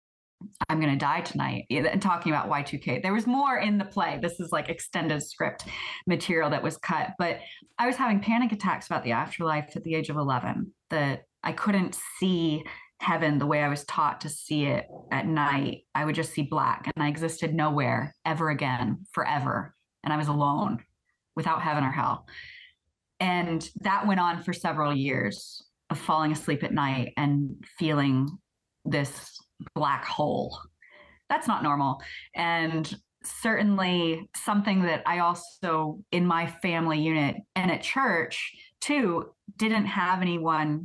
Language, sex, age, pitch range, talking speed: English, female, 20-39, 150-190 Hz, 160 wpm